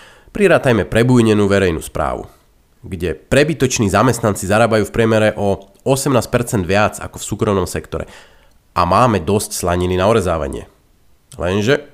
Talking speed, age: 120 wpm, 30-49